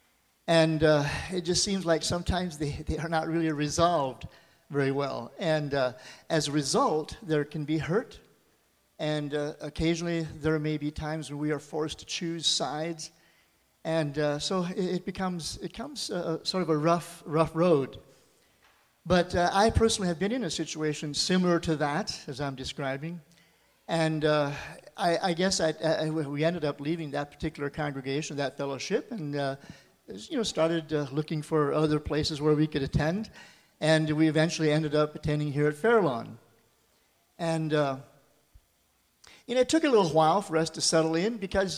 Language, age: English, 50-69